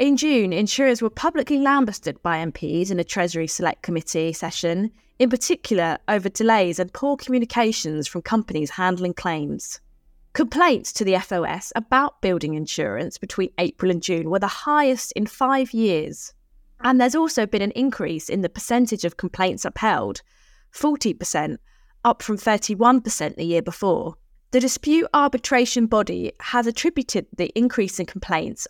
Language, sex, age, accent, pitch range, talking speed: English, female, 20-39, British, 180-250 Hz, 150 wpm